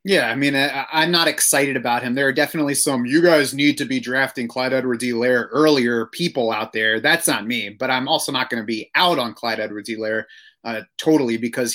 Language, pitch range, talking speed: English, 125-160 Hz, 235 wpm